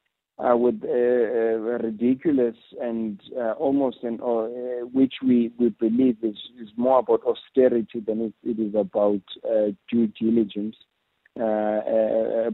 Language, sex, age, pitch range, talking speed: English, male, 50-69, 110-120 Hz, 145 wpm